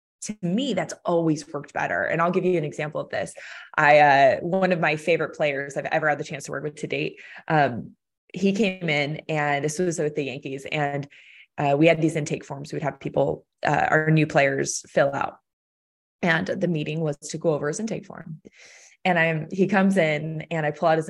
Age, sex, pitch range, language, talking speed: 20-39, female, 145-175 Hz, English, 220 wpm